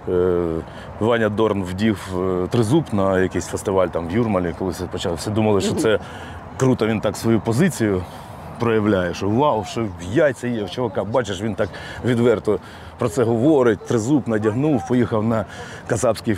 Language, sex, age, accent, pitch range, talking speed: Ukrainian, male, 20-39, native, 105-130 Hz, 150 wpm